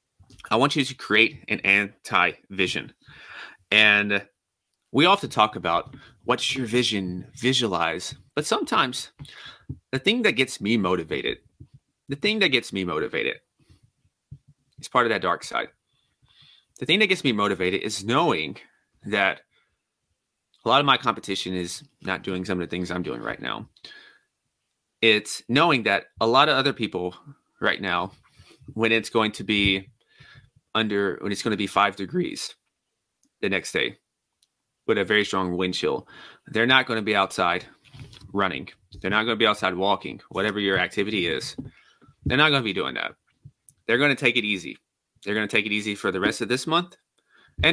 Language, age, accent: English, 30-49, American